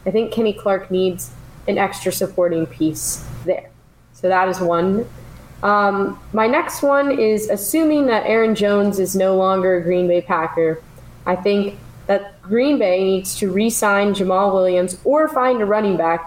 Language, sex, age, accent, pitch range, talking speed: English, female, 10-29, American, 175-210 Hz, 165 wpm